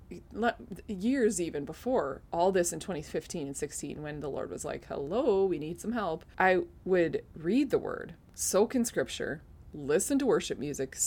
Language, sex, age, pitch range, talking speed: English, female, 20-39, 150-195 Hz, 170 wpm